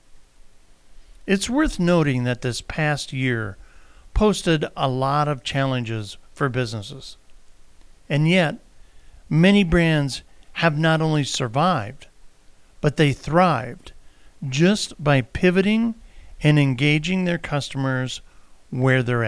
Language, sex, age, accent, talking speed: English, male, 50-69, American, 105 wpm